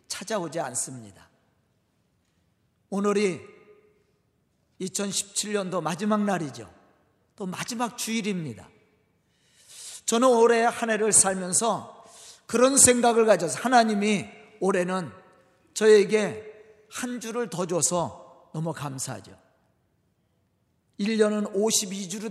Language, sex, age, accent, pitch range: Korean, male, 40-59, native, 170-235 Hz